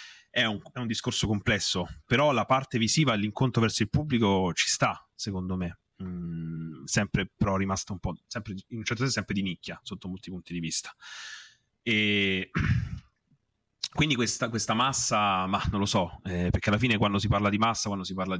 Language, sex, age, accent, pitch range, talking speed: Italian, male, 30-49, native, 95-120 Hz, 190 wpm